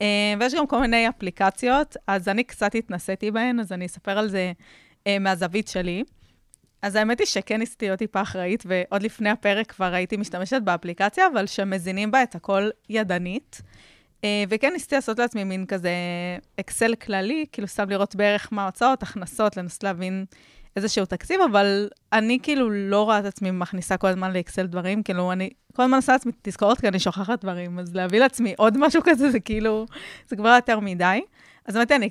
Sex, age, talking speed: female, 20-39, 180 wpm